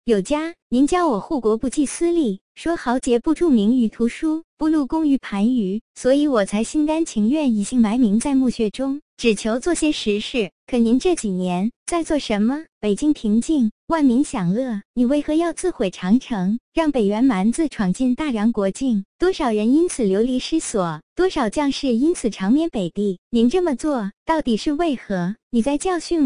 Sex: male